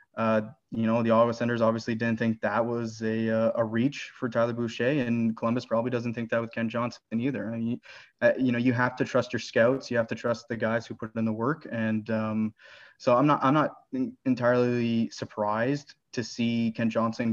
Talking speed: 215 wpm